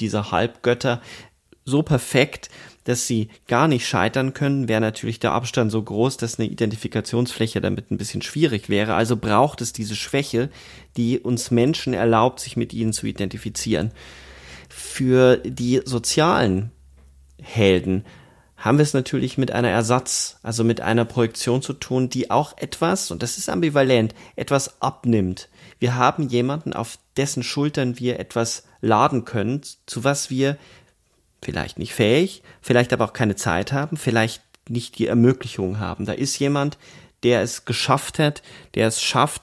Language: German